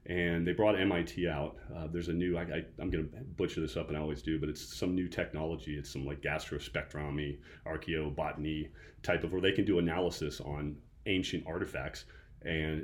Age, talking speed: 30-49, 195 wpm